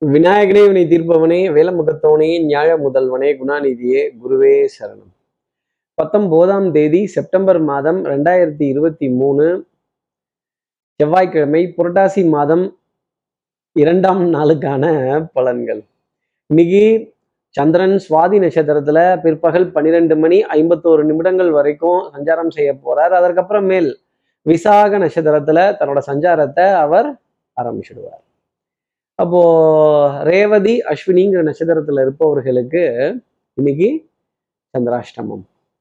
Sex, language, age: male, Tamil, 20-39